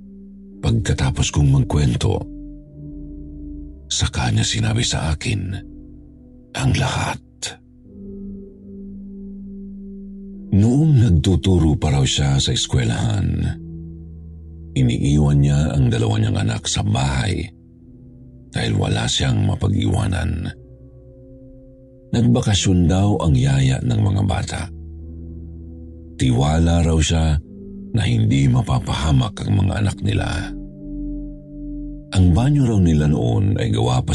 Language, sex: Filipino, male